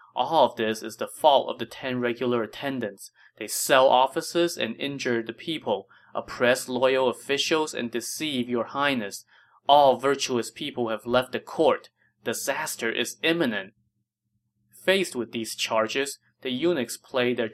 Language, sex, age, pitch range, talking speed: English, male, 20-39, 115-140 Hz, 145 wpm